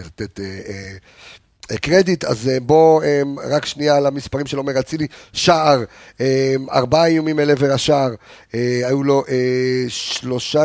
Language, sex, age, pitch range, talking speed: Hebrew, male, 40-59, 125-150 Hz, 115 wpm